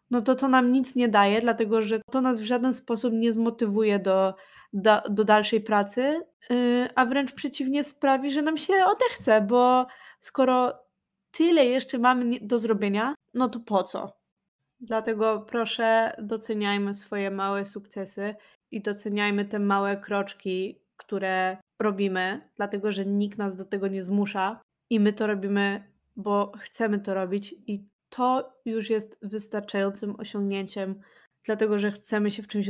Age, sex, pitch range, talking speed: 20-39, female, 200-235 Hz, 145 wpm